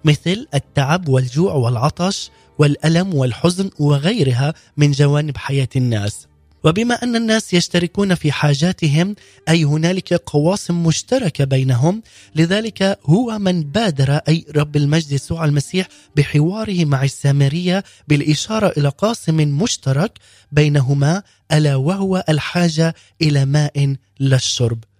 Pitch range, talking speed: 140-175 Hz, 105 wpm